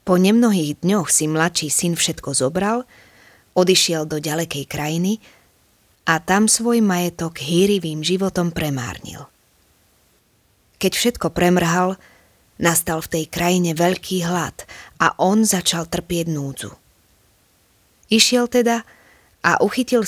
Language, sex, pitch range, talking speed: Slovak, female, 140-180 Hz, 110 wpm